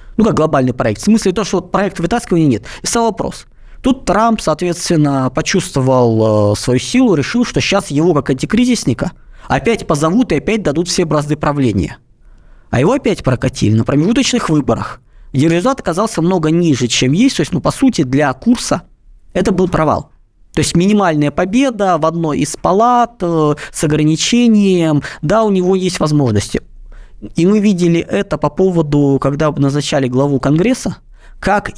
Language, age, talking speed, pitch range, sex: Russian, 20-39, 165 wpm, 135-190 Hz, male